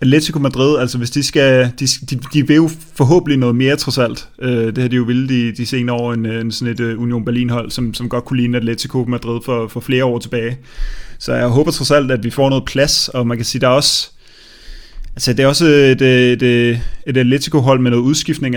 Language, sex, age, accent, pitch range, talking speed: Danish, male, 30-49, native, 120-140 Hz, 235 wpm